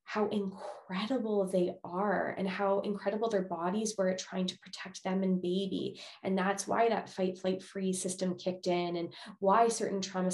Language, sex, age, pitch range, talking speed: English, female, 20-39, 180-205 Hz, 180 wpm